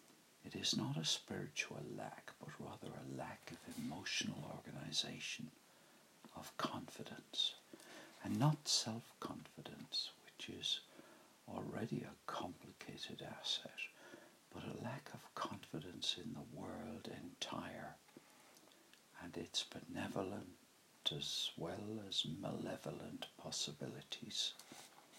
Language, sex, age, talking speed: English, male, 60-79, 100 wpm